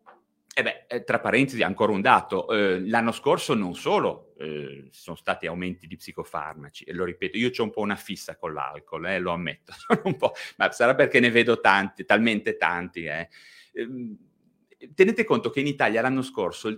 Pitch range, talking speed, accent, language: 105-150 Hz, 180 wpm, native, Italian